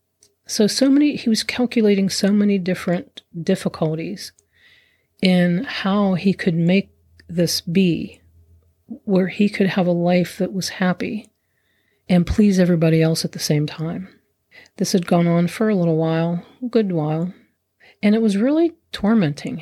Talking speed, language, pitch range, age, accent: 155 wpm, English, 160-205 Hz, 40-59, American